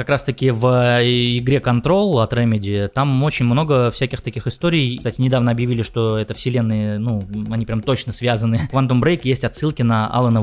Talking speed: 180 wpm